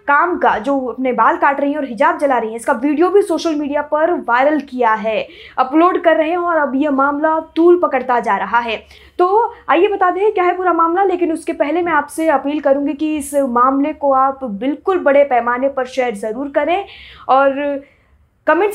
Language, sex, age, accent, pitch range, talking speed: Hindi, female, 20-39, native, 255-330 Hz, 205 wpm